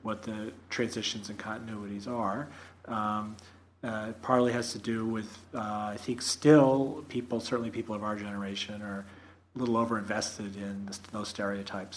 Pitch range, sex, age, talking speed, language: 105-125 Hz, male, 40-59, 150 wpm, English